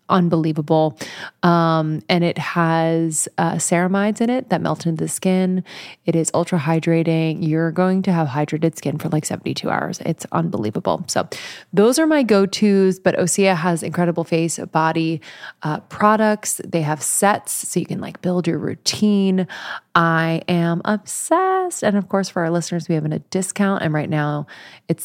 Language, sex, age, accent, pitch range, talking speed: English, female, 20-39, American, 155-185 Hz, 170 wpm